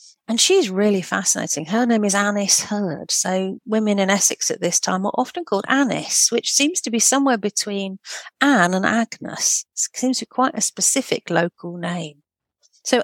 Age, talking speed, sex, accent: 50-69, 175 wpm, female, British